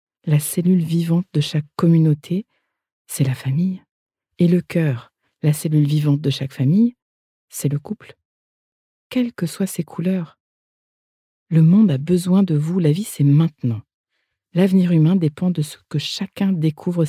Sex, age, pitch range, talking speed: female, 50-69, 140-175 Hz, 155 wpm